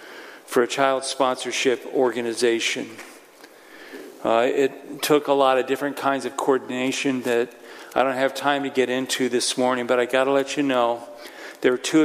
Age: 40-59